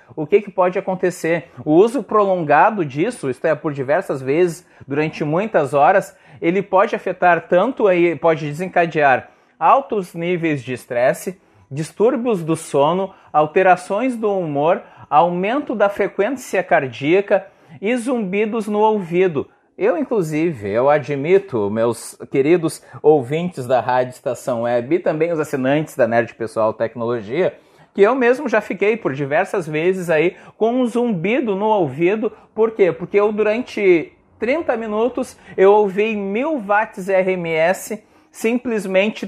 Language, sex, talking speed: Portuguese, male, 135 wpm